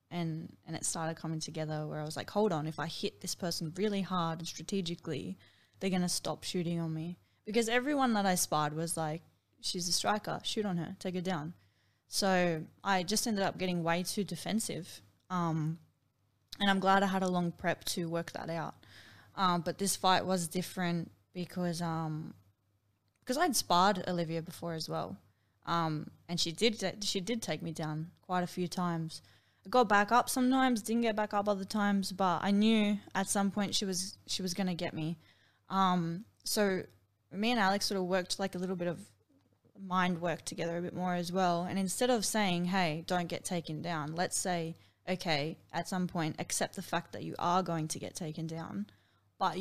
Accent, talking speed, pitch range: Australian, 200 wpm, 160-190 Hz